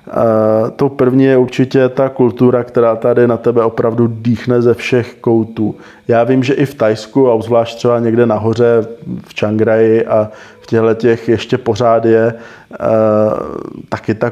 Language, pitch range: Czech, 115-125 Hz